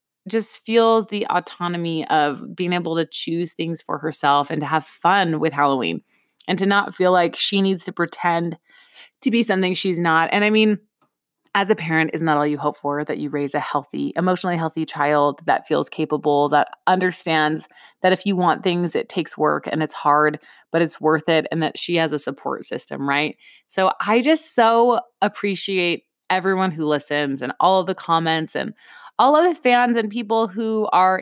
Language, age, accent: English, 20-39, American